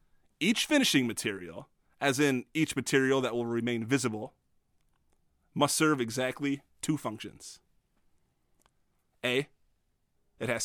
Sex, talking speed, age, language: male, 105 wpm, 30-49, English